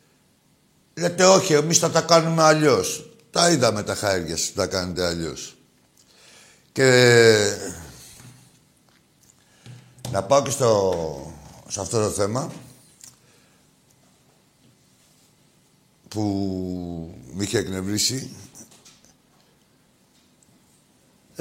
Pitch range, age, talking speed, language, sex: 110-155 Hz, 60-79, 80 wpm, Greek, male